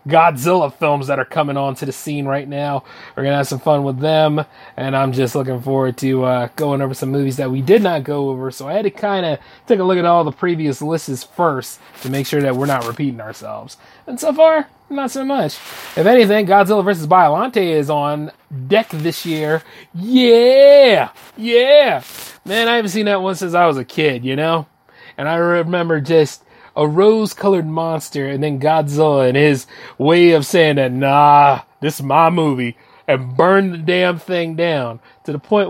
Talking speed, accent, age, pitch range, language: 200 wpm, American, 30-49, 140-195 Hz, English